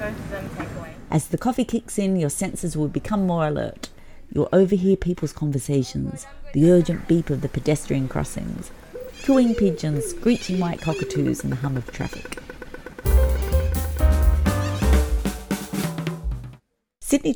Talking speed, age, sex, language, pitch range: 115 wpm, 40-59, female, English, 130-180 Hz